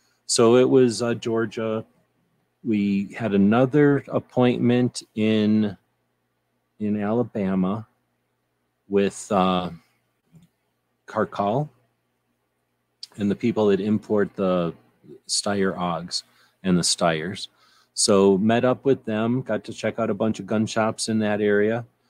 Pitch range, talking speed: 95-120 Hz, 115 wpm